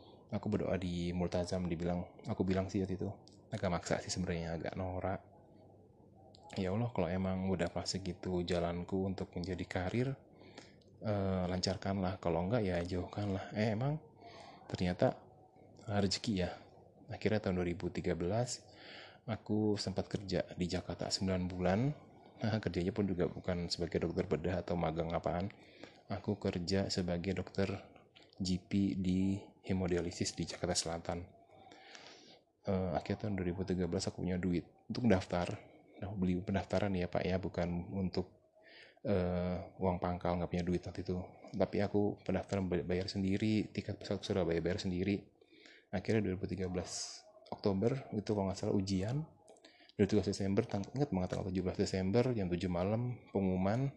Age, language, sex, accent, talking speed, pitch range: 20-39, Indonesian, male, native, 130 wpm, 90-105 Hz